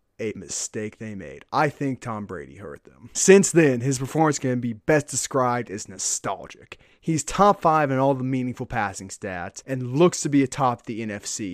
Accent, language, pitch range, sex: American, English, 120-155 Hz, male